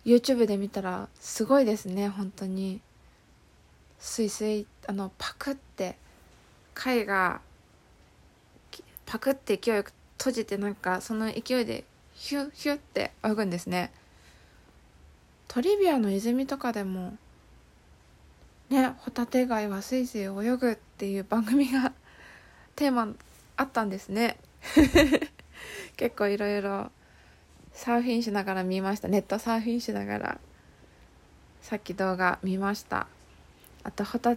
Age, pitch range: 20-39, 190-235 Hz